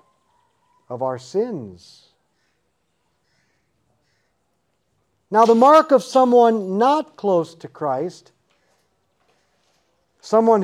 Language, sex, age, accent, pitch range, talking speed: English, male, 50-69, American, 160-240 Hz, 75 wpm